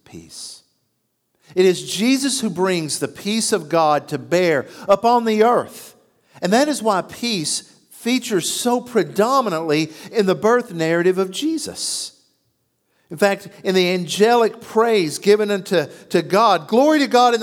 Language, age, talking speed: English, 50-69, 150 wpm